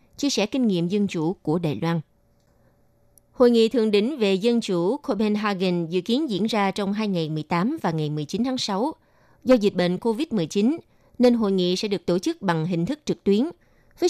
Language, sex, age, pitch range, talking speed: Vietnamese, female, 20-39, 175-220 Hz, 195 wpm